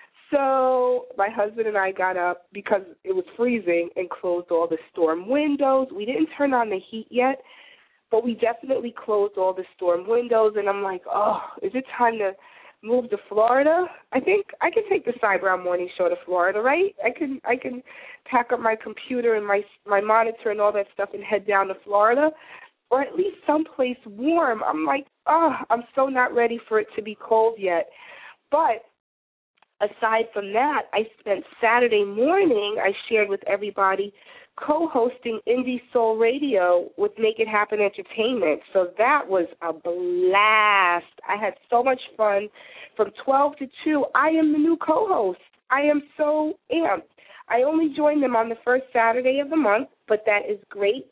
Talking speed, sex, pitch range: 180 wpm, female, 200-275 Hz